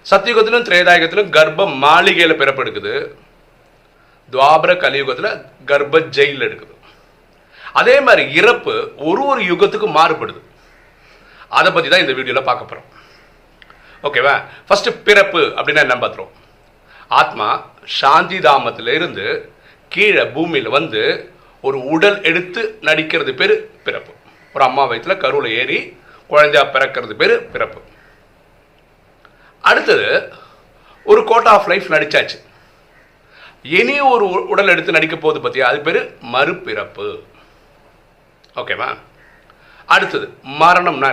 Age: 40-59